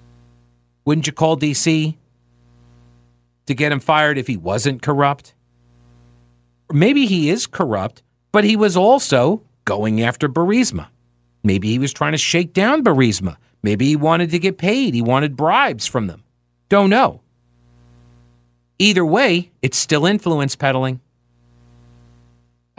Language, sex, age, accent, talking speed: English, male, 40-59, American, 135 wpm